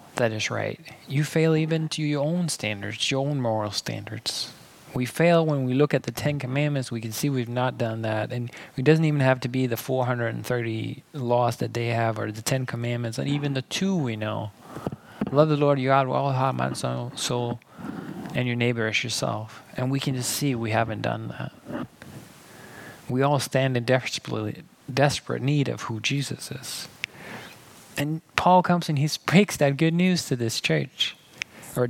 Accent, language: American, English